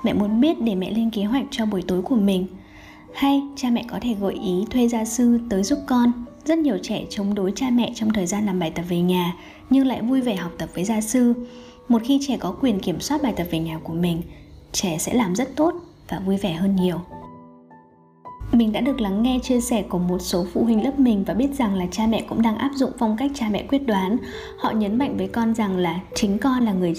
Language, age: Vietnamese, 20-39